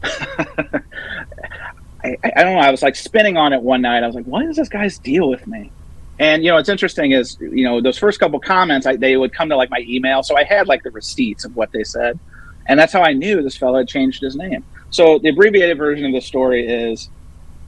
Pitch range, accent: 125-160 Hz, American